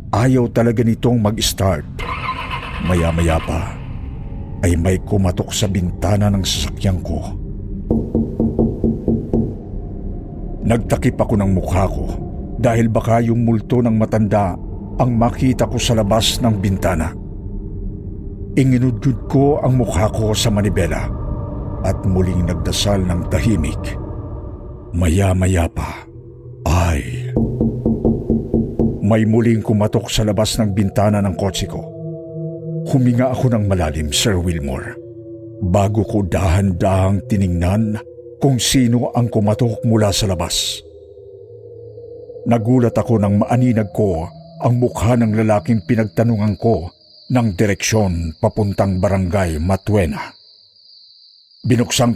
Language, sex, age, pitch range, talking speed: Filipino, male, 50-69, 95-120 Hz, 105 wpm